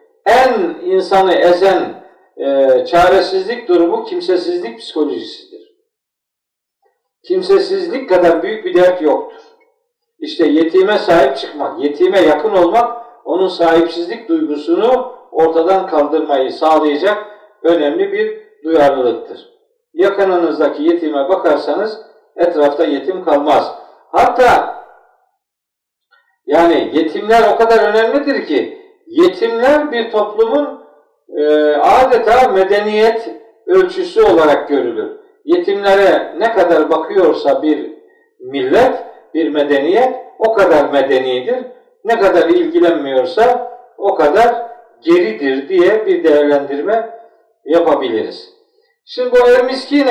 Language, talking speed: Turkish, 95 wpm